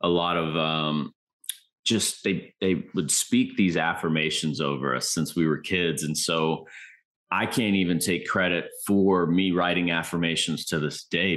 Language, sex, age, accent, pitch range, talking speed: English, male, 30-49, American, 80-95 Hz, 165 wpm